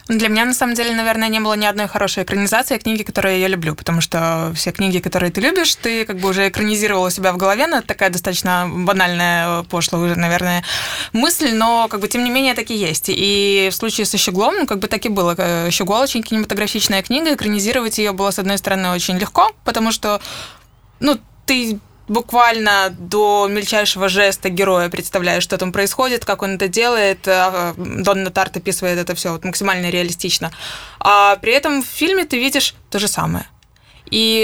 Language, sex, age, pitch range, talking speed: Russian, female, 20-39, 185-230 Hz, 190 wpm